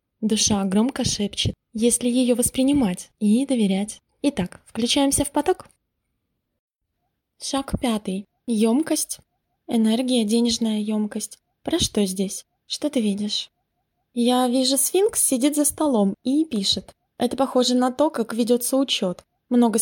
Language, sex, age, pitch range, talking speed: Russian, female, 20-39, 220-265 Hz, 120 wpm